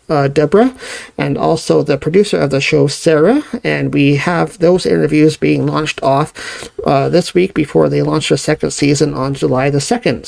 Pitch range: 140-165 Hz